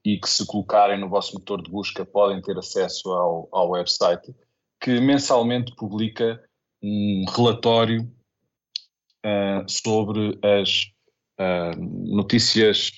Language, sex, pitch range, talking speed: Portuguese, male, 95-115 Hz, 105 wpm